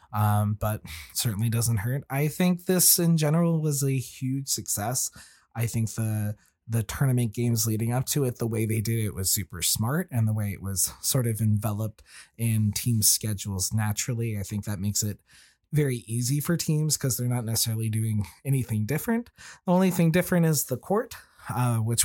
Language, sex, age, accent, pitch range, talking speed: English, male, 20-39, American, 110-125 Hz, 190 wpm